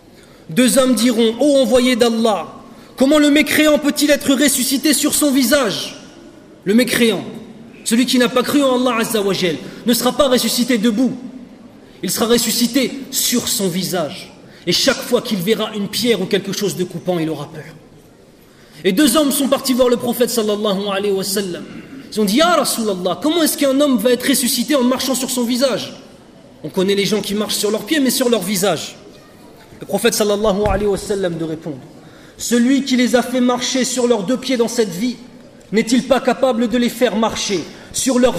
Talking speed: 195 wpm